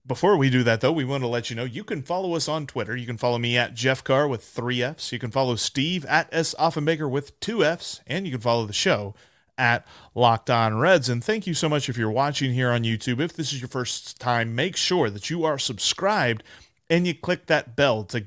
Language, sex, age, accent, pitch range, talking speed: English, male, 30-49, American, 120-175 Hz, 245 wpm